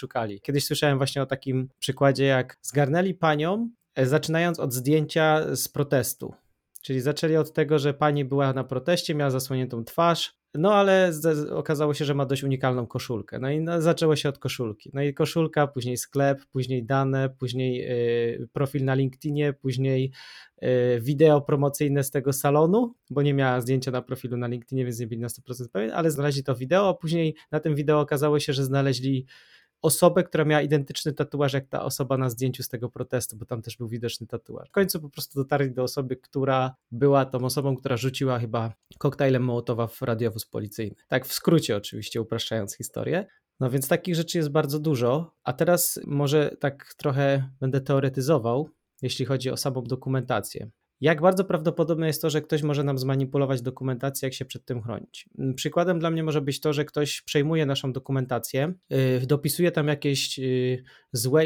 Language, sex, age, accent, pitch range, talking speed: Polish, male, 20-39, native, 130-150 Hz, 180 wpm